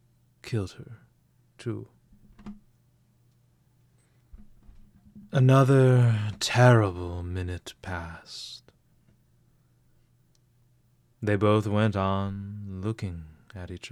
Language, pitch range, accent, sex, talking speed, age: English, 105-125 Hz, American, male, 60 wpm, 30-49